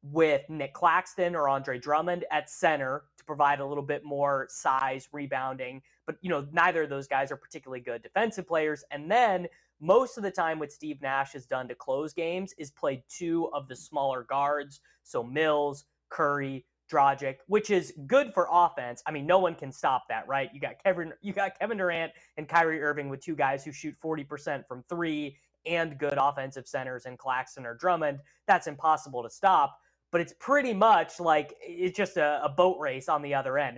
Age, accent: 20-39, American